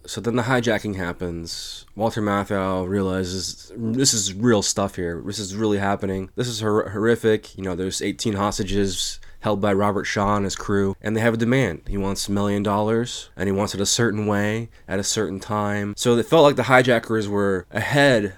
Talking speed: 200 wpm